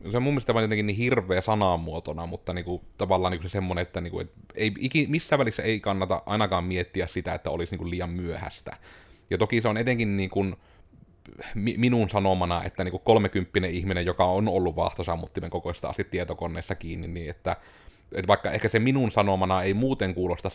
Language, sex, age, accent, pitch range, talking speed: Finnish, male, 30-49, native, 90-110 Hz, 195 wpm